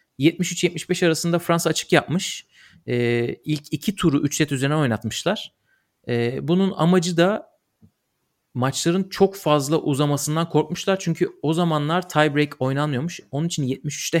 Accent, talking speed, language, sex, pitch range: native, 125 wpm, Turkish, male, 120-160 Hz